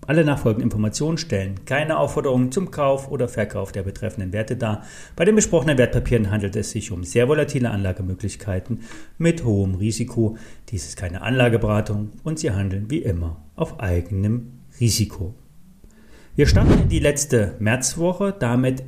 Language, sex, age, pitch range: German, male, 40-59, 105-160 Hz